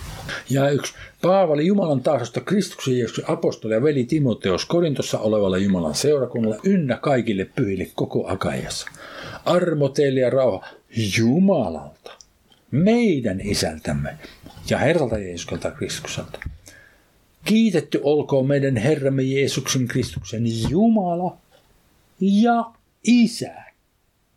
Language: Finnish